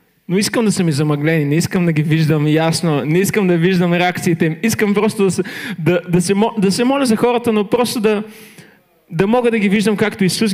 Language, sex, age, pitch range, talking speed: Bulgarian, male, 20-39, 170-215 Hz, 215 wpm